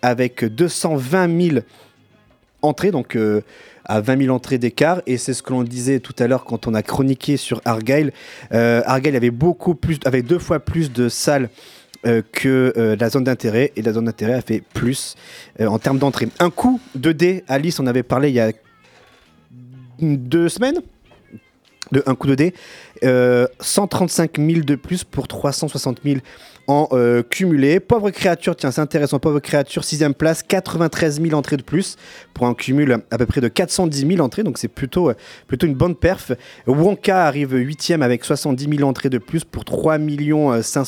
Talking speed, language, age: 185 wpm, French, 30-49